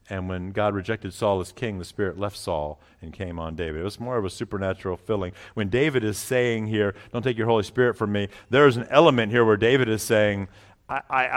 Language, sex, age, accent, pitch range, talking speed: English, male, 50-69, American, 90-115 Hz, 230 wpm